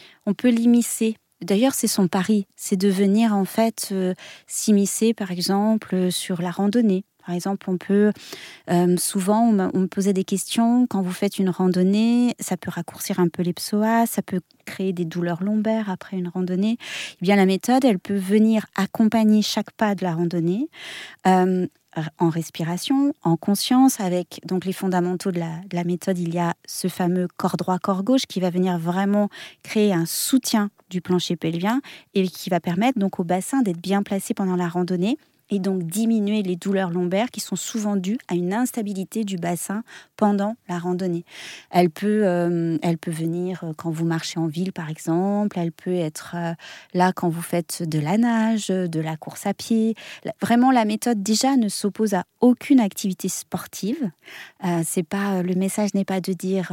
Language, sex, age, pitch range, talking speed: French, female, 30-49, 180-215 Hz, 190 wpm